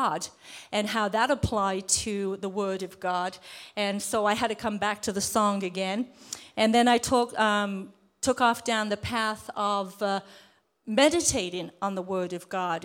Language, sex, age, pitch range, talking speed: English, female, 50-69, 195-240 Hz, 175 wpm